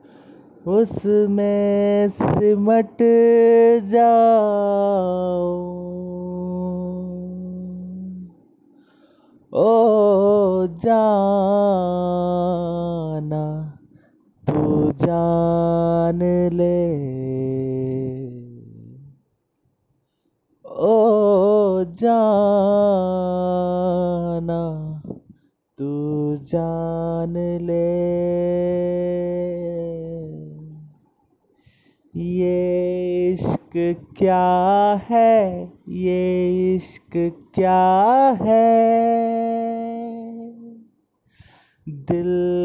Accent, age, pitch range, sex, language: native, 30-49, 170-210 Hz, male, Hindi